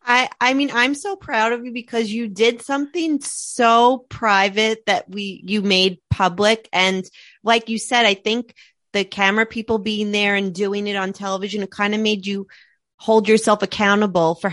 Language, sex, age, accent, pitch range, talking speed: English, female, 30-49, American, 180-215 Hz, 180 wpm